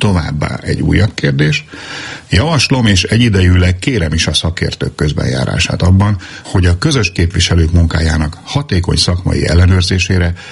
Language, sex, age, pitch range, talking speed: Hungarian, male, 60-79, 80-95 Hz, 120 wpm